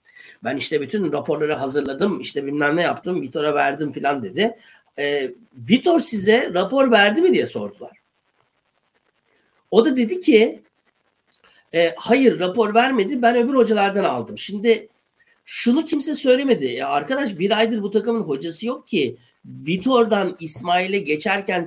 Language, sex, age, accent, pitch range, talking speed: Turkish, male, 60-79, native, 150-235 Hz, 135 wpm